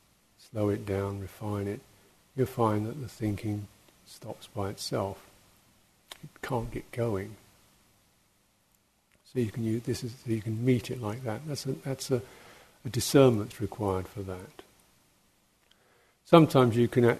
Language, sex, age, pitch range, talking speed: English, male, 50-69, 100-120 Hz, 145 wpm